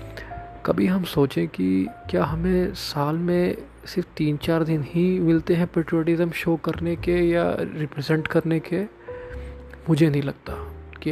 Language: Hindi